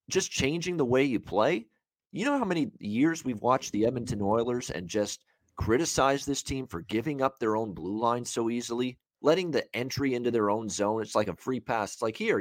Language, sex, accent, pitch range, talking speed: English, male, American, 105-135 Hz, 220 wpm